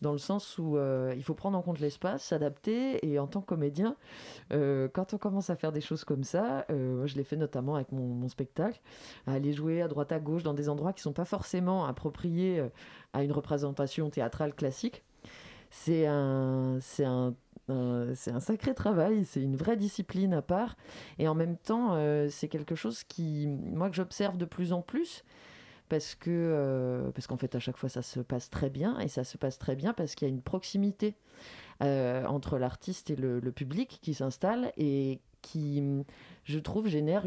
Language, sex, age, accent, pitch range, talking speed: French, female, 30-49, French, 135-185 Hz, 210 wpm